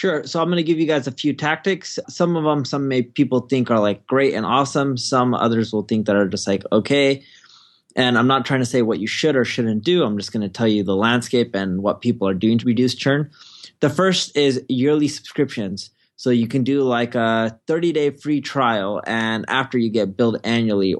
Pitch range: 115-140 Hz